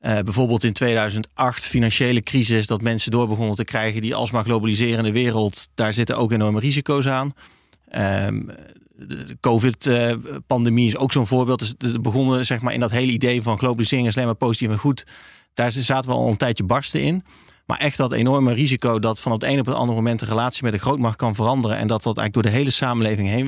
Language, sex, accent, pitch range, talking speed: Dutch, male, Dutch, 110-125 Hz, 220 wpm